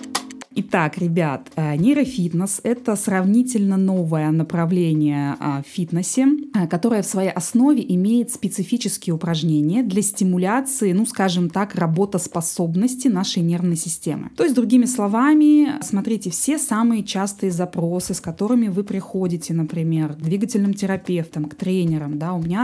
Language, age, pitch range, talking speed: Russian, 20-39, 165-205 Hz, 125 wpm